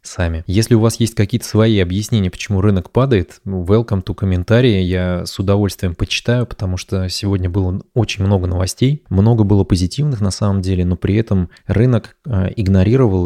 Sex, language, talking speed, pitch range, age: male, Russian, 165 wpm, 90-105 Hz, 20-39